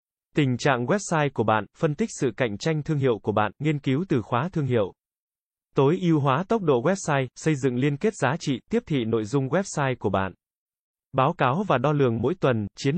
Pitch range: 120-160 Hz